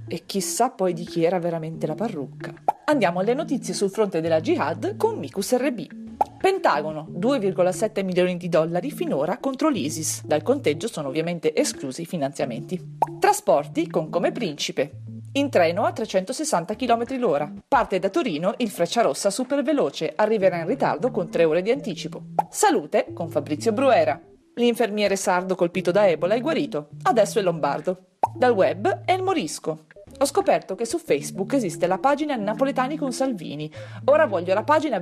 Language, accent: Italian, native